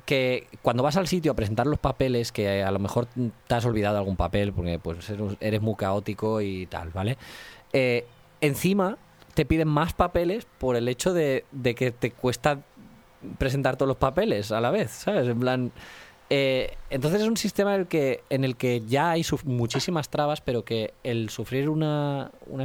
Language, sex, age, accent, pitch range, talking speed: Spanish, male, 20-39, Spanish, 110-140 Hz, 190 wpm